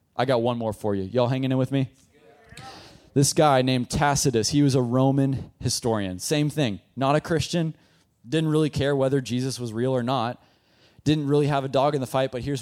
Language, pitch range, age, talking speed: English, 110-145 Hz, 20-39, 210 wpm